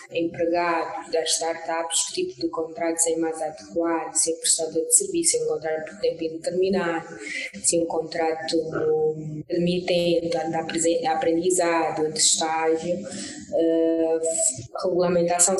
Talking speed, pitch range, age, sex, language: 120 wpm, 165-180 Hz, 20-39, female, Portuguese